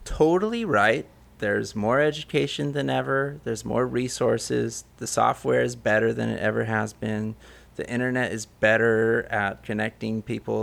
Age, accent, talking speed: 30-49, American, 145 wpm